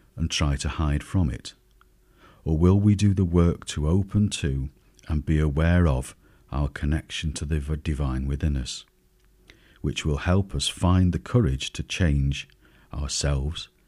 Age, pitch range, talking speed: 50-69, 70-90 Hz, 155 wpm